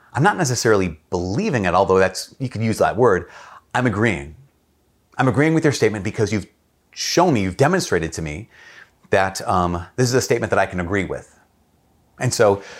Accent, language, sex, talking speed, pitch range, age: American, English, male, 190 wpm, 90-125 Hz, 30-49